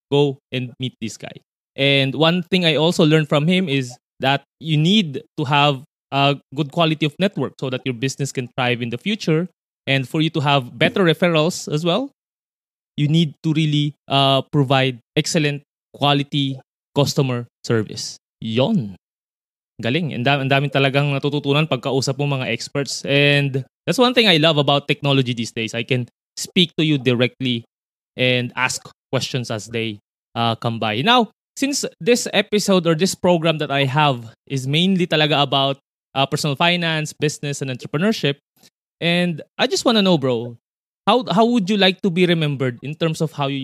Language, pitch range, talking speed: Filipino, 135-165 Hz, 175 wpm